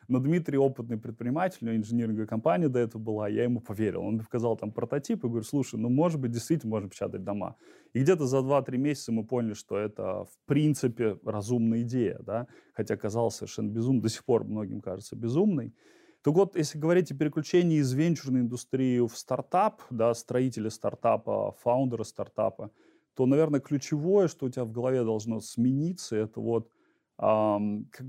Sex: male